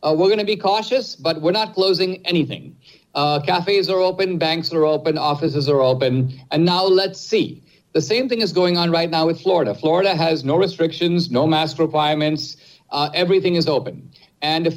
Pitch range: 140-180 Hz